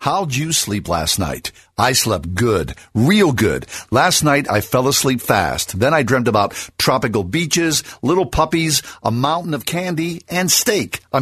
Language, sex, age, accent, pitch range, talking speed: English, male, 50-69, American, 110-145 Hz, 165 wpm